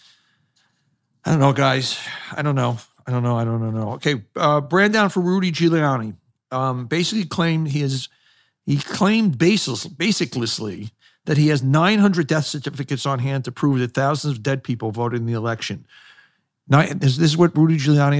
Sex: male